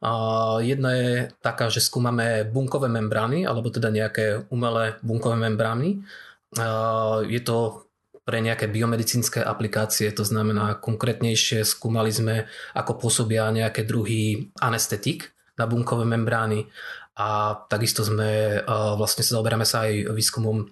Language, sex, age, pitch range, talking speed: Slovak, male, 20-39, 110-120 Hz, 120 wpm